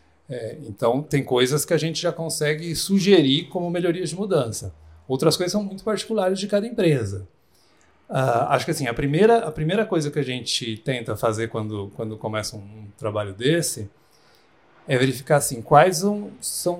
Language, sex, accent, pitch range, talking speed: Portuguese, male, Brazilian, 120-160 Hz, 170 wpm